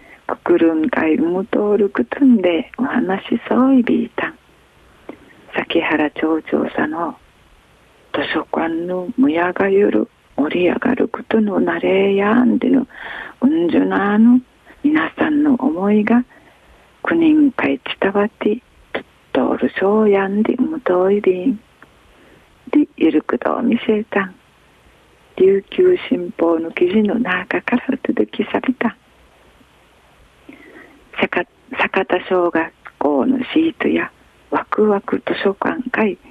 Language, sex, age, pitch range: Japanese, female, 40-59, 195-265 Hz